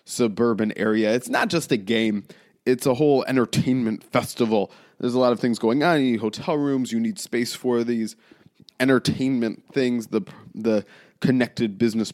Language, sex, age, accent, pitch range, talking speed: English, male, 20-39, American, 115-165 Hz, 170 wpm